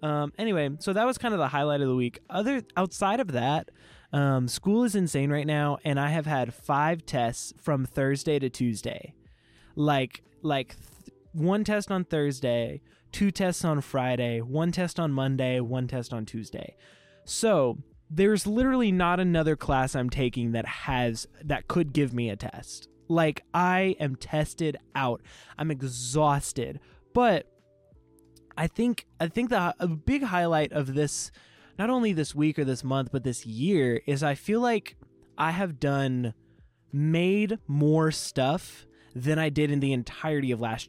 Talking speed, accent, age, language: 165 wpm, American, 20-39, English